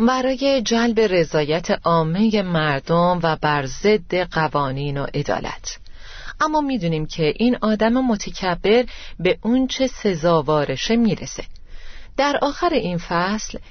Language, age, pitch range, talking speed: Persian, 30-49, 165-230 Hz, 110 wpm